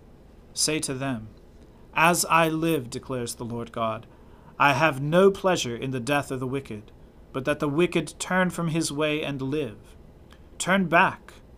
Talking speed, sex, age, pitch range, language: 165 wpm, male, 40-59, 115-160 Hz, English